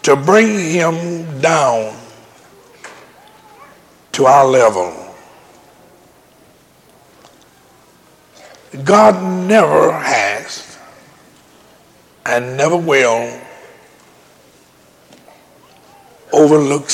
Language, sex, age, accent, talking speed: English, male, 60-79, American, 50 wpm